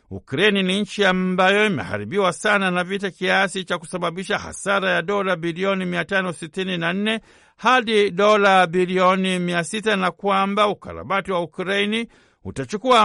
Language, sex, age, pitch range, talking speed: Swahili, male, 60-79, 180-205 Hz, 120 wpm